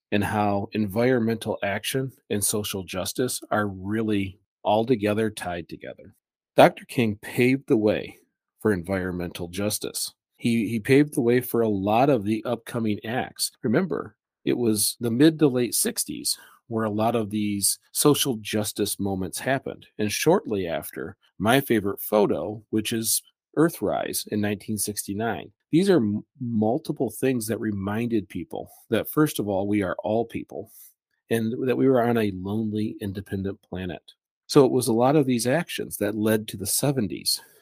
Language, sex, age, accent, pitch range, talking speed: English, male, 40-59, American, 100-120 Hz, 155 wpm